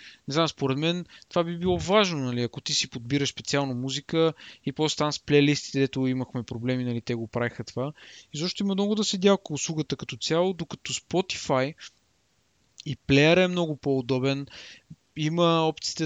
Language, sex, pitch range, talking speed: Bulgarian, male, 135-170 Hz, 170 wpm